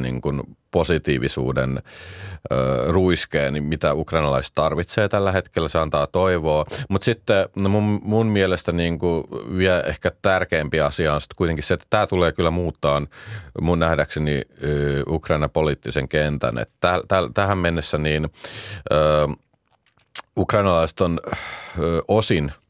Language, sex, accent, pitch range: Finnish, male, native, 75-95 Hz